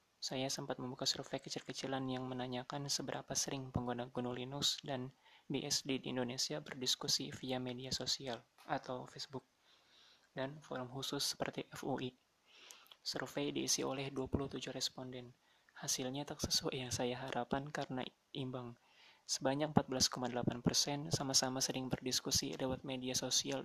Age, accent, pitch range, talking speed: 20-39, native, 125-140 Hz, 120 wpm